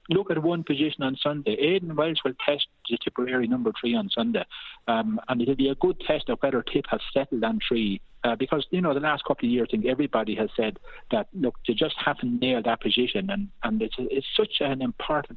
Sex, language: male, English